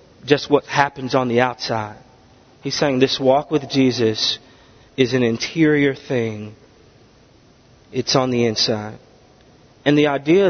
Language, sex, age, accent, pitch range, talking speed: English, male, 30-49, American, 120-150 Hz, 130 wpm